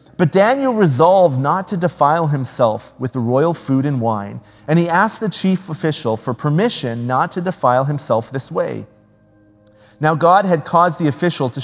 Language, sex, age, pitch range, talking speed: English, male, 40-59, 130-170 Hz, 175 wpm